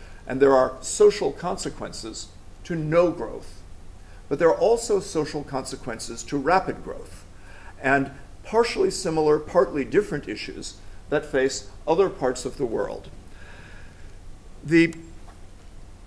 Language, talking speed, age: English, 115 wpm, 50-69